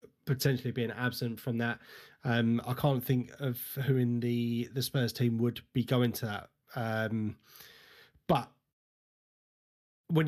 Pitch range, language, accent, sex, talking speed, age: 120-140 Hz, English, British, male, 140 wpm, 30-49